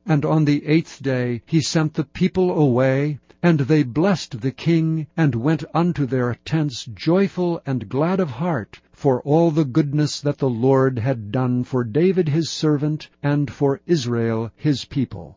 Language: English